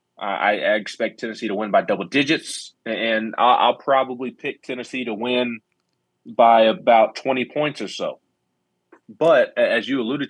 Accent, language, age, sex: American, English, 20-39, male